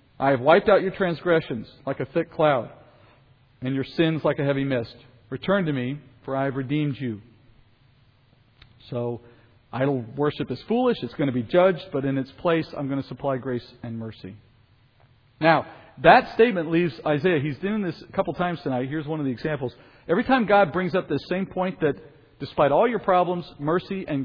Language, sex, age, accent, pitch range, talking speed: English, male, 40-59, American, 130-175 Hz, 195 wpm